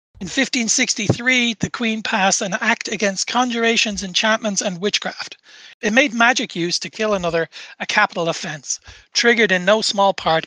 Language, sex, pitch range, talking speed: English, male, 180-220 Hz, 155 wpm